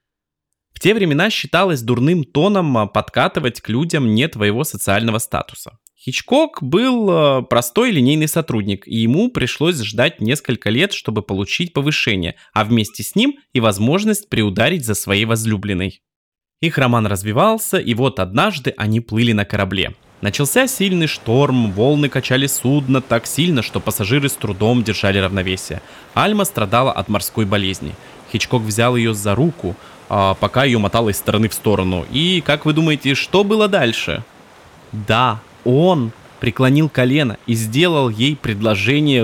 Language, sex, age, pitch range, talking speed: Russian, male, 20-39, 105-145 Hz, 140 wpm